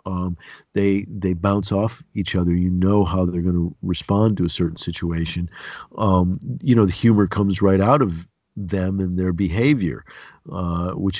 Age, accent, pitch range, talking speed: 50-69, American, 90-110 Hz, 175 wpm